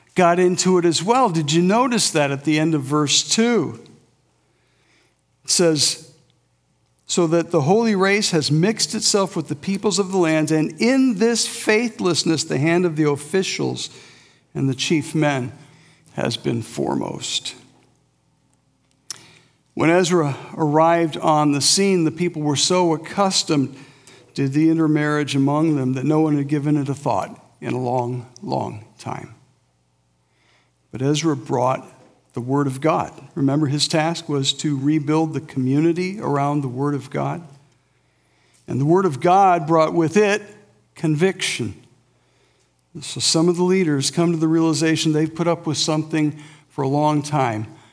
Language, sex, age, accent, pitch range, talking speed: English, male, 60-79, American, 135-170 Hz, 155 wpm